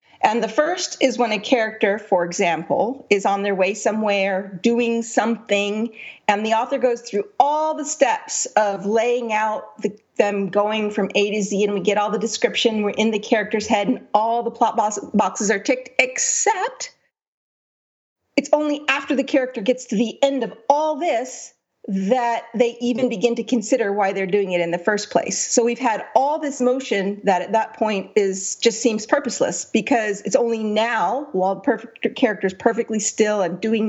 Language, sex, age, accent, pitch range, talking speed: English, female, 40-59, American, 200-250 Hz, 180 wpm